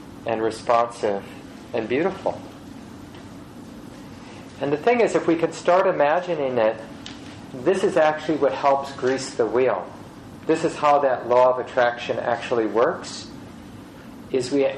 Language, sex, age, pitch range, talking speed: English, male, 40-59, 125-155 Hz, 135 wpm